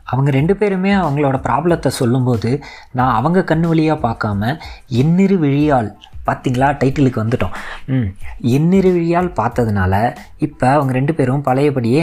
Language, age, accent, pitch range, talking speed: Tamil, 20-39, native, 110-140 Hz, 120 wpm